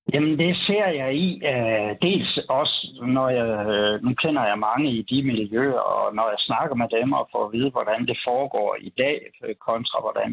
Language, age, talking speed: Danish, 60-79, 190 wpm